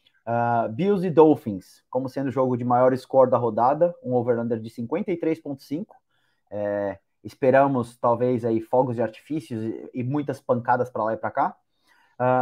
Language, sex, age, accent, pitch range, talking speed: Portuguese, male, 20-39, Brazilian, 115-150 Hz, 165 wpm